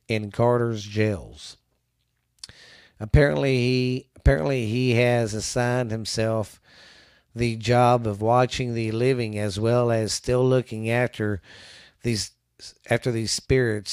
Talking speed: 110 wpm